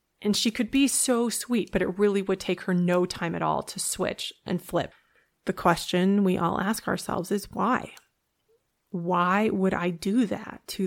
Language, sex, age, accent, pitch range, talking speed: English, female, 20-39, American, 180-205 Hz, 190 wpm